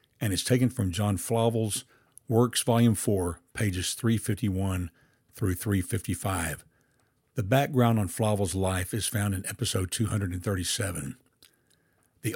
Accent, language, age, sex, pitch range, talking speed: American, English, 60-79, male, 95-125 Hz, 115 wpm